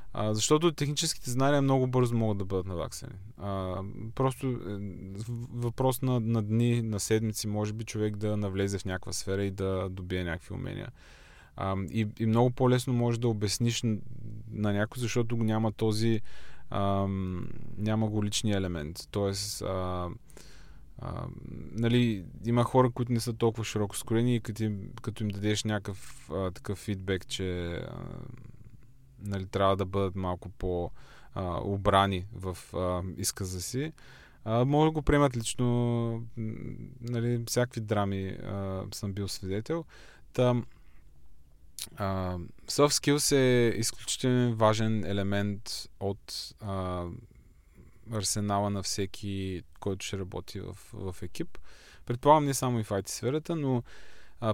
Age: 20-39